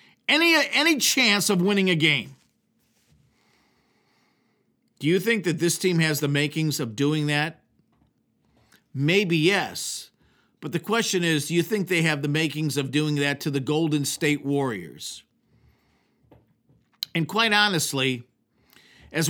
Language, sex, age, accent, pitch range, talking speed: English, male, 50-69, American, 150-195 Hz, 135 wpm